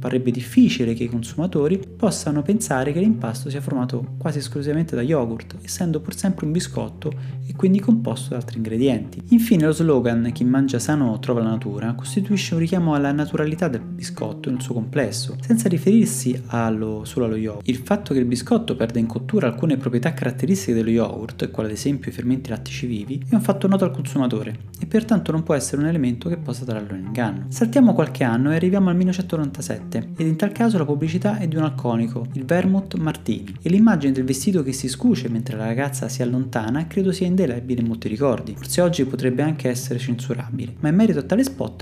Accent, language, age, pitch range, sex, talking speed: native, Italian, 30-49, 125-175 Hz, male, 200 wpm